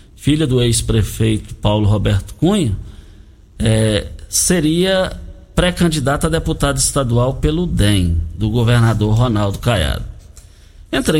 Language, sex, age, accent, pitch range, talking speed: Portuguese, male, 60-79, Brazilian, 105-160 Hz, 100 wpm